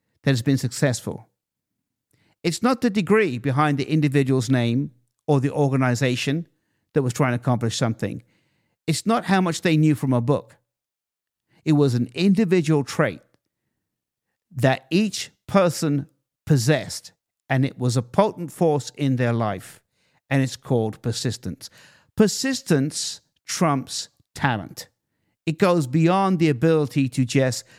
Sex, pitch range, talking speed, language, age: male, 125-165 Hz, 135 wpm, English, 50-69